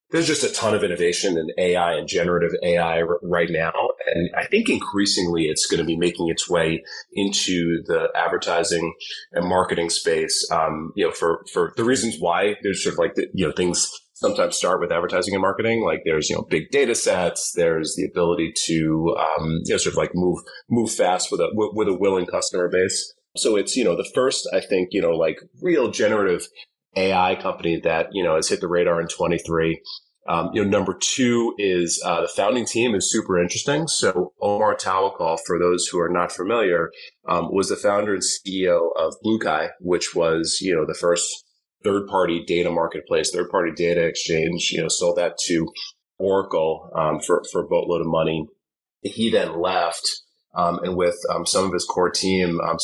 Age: 30-49